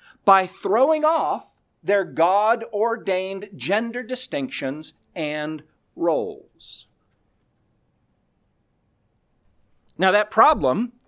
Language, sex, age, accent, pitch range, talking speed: English, male, 40-59, American, 170-230 Hz, 65 wpm